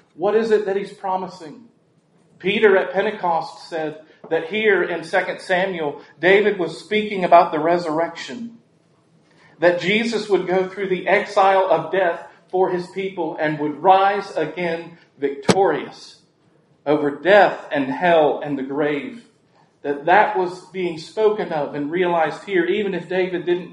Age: 40-59